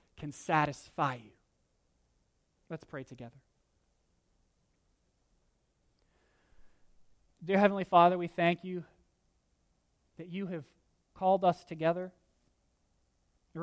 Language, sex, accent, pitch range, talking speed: English, male, American, 135-180 Hz, 85 wpm